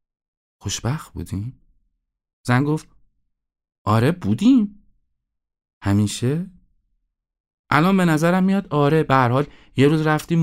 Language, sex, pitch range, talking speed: Persian, male, 90-135 Hz, 90 wpm